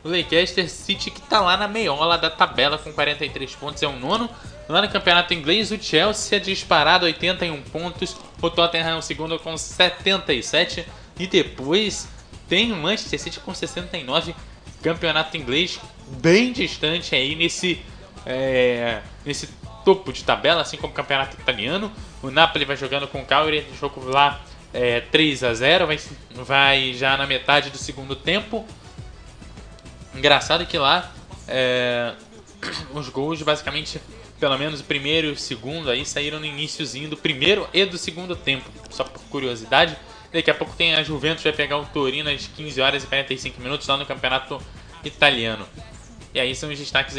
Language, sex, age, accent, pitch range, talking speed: Portuguese, male, 20-39, Brazilian, 130-160 Hz, 170 wpm